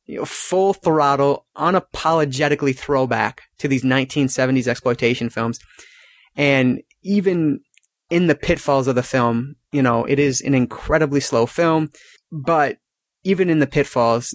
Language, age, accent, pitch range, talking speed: English, 30-49, American, 125-145 Hz, 125 wpm